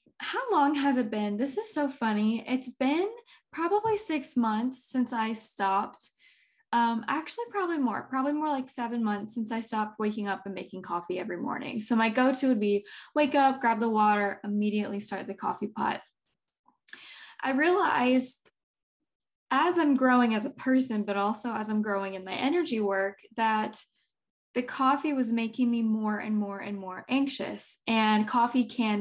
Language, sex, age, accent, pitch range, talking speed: English, female, 10-29, American, 210-260 Hz, 170 wpm